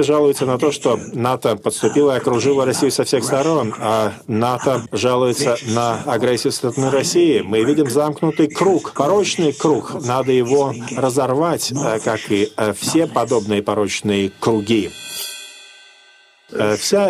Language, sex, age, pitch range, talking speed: Russian, male, 40-59, 120-155 Hz, 125 wpm